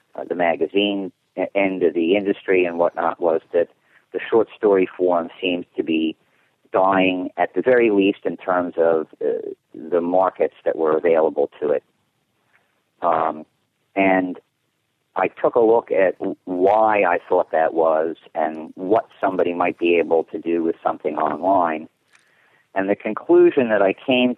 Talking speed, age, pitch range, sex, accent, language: 155 wpm, 50-69, 85-115 Hz, male, American, English